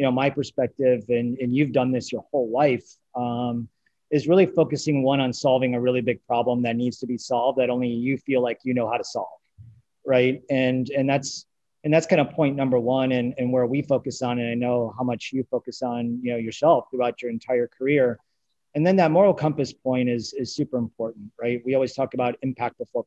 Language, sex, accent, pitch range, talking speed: English, male, American, 125-145 Hz, 225 wpm